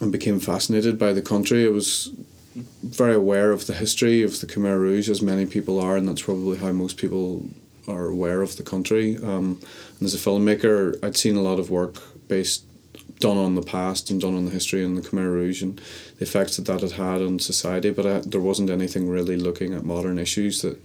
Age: 30-49